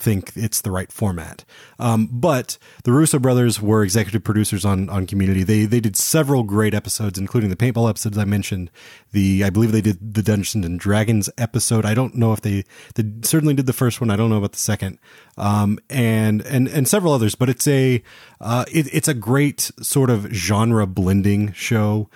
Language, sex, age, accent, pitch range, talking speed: English, male, 30-49, American, 100-120 Hz, 200 wpm